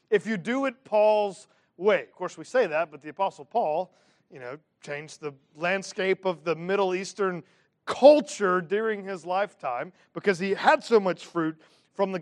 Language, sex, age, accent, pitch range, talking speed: English, male, 40-59, American, 190-255 Hz, 175 wpm